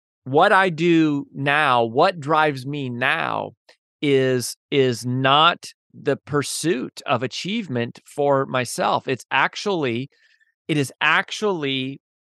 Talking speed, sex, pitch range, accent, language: 105 wpm, male, 125-160 Hz, American, English